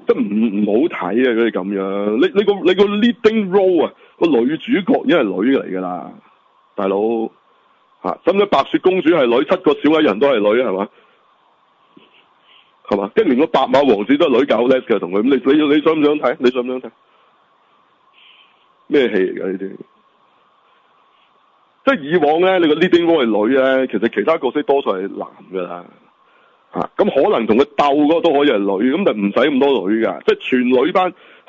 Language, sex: Chinese, male